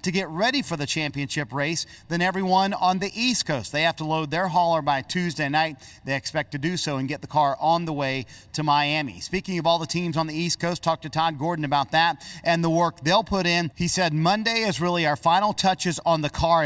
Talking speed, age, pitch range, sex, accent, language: 245 wpm, 40-59, 145-185 Hz, male, American, English